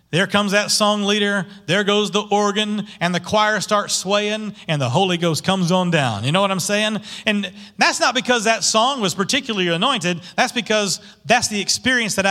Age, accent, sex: 40-59, American, male